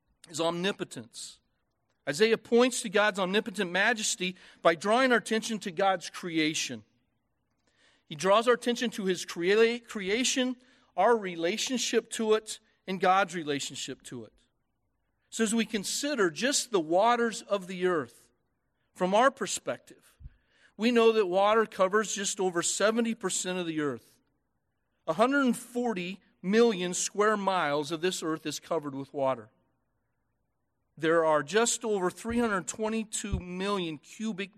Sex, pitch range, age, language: male, 150-220 Hz, 40-59, English